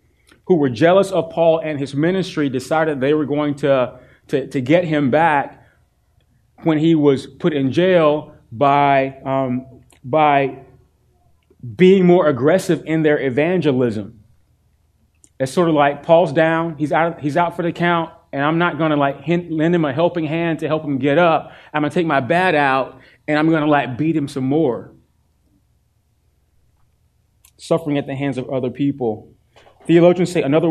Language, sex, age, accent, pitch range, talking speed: English, male, 30-49, American, 130-160 Hz, 170 wpm